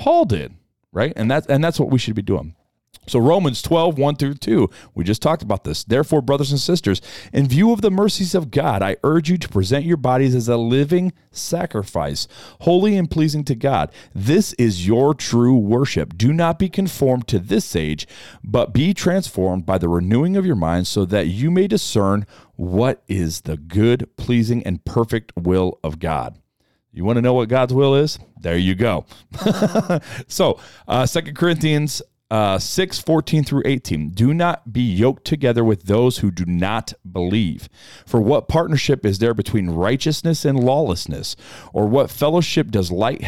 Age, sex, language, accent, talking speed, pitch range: 40-59, male, English, American, 180 wpm, 105-150 Hz